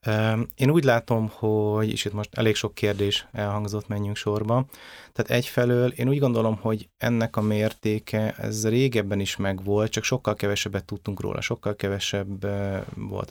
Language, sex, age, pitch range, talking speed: Hungarian, male, 30-49, 95-110 Hz, 155 wpm